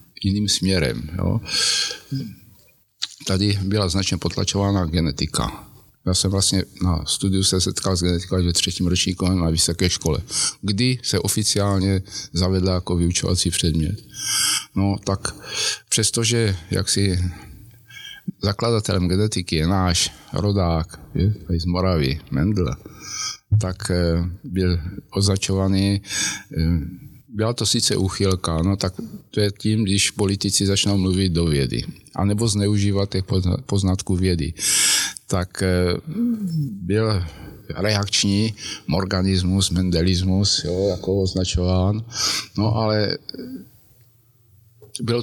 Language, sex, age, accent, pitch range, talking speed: Czech, male, 50-69, native, 90-110 Hz, 100 wpm